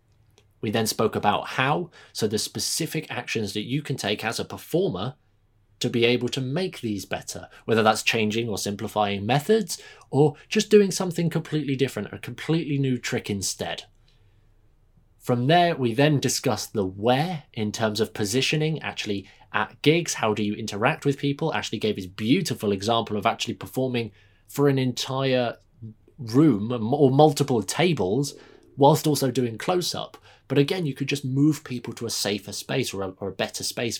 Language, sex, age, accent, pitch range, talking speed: English, male, 20-39, British, 105-140 Hz, 170 wpm